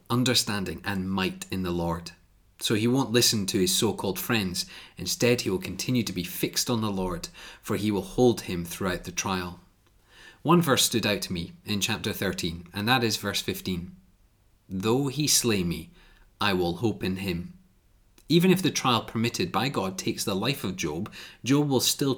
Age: 30-49